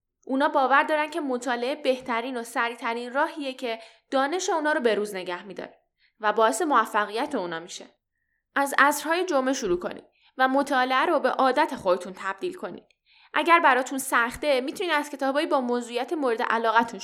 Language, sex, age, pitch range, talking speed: Persian, female, 10-29, 220-290 Hz, 160 wpm